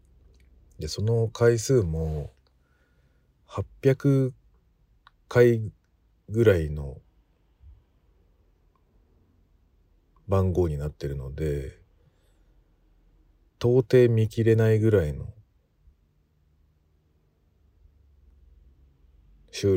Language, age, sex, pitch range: Japanese, 50-69, male, 75-105 Hz